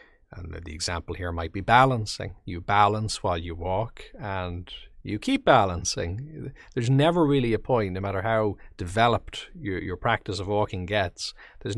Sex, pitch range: male, 90-115 Hz